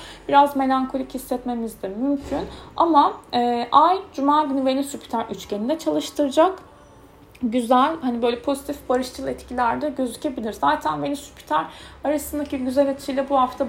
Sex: female